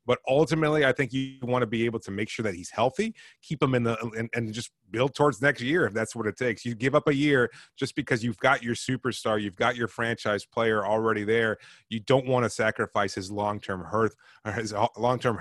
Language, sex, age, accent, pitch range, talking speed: English, male, 30-49, American, 110-140 Hz, 235 wpm